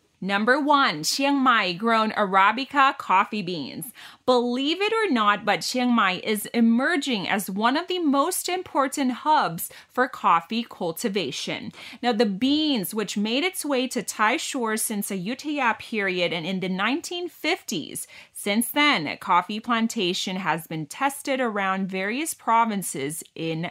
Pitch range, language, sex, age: 190-260 Hz, Thai, female, 30-49